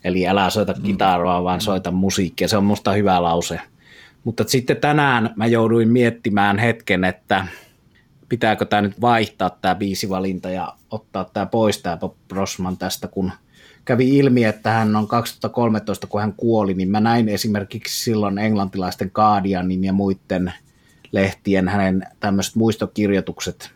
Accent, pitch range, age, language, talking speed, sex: native, 95-110 Hz, 30-49, Finnish, 140 wpm, male